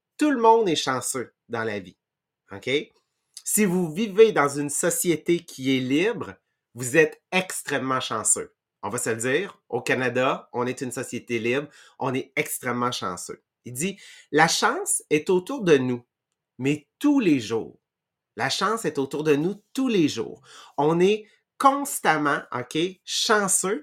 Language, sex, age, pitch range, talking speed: English, male, 30-49, 140-190 Hz, 160 wpm